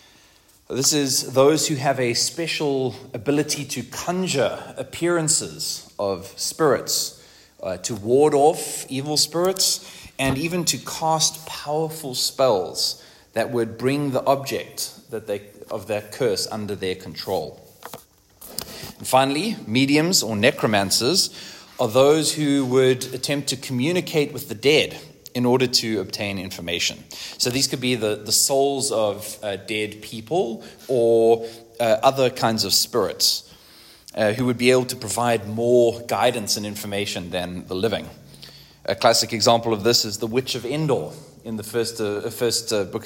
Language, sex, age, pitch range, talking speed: English, male, 30-49, 110-135 Hz, 150 wpm